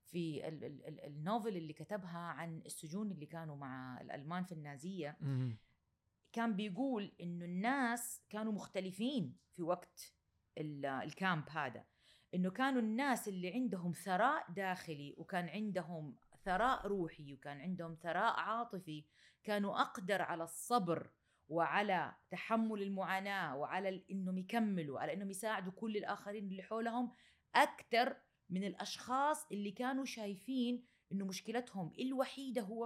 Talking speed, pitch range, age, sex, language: 115 wpm, 165-220 Hz, 30-49, female, Arabic